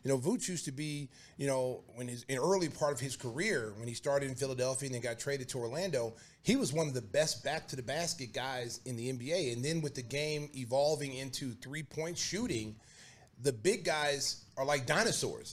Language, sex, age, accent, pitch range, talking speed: English, male, 30-49, American, 130-165 Hz, 215 wpm